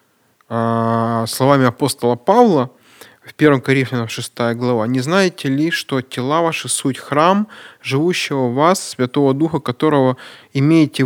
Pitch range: 120-145 Hz